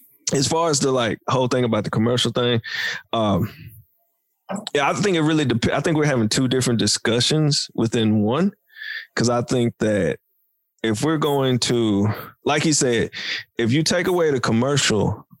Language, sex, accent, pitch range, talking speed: English, male, American, 110-135 Hz, 170 wpm